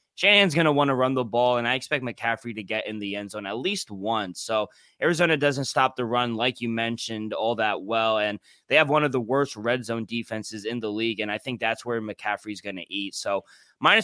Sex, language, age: male, English, 20-39